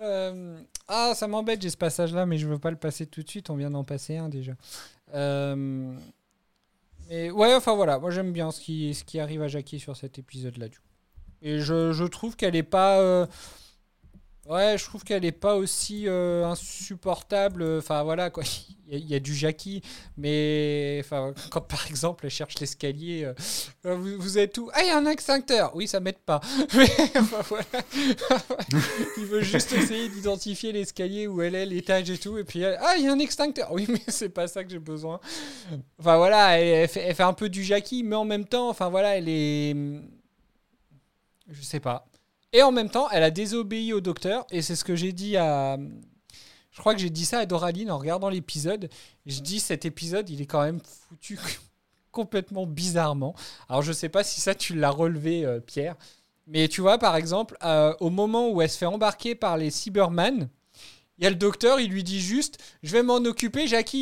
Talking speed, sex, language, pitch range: 210 wpm, male, French, 155-210 Hz